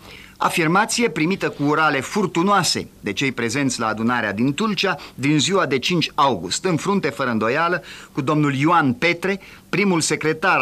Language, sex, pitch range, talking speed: Romanian, male, 135-190 Hz, 155 wpm